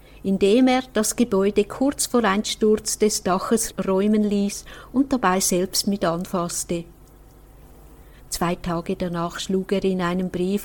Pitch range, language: 180-215 Hz, German